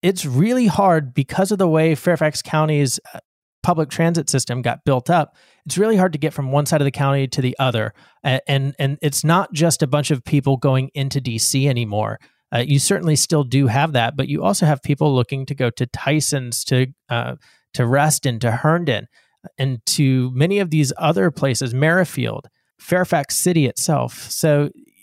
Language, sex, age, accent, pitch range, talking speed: English, male, 30-49, American, 125-155 Hz, 185 wpm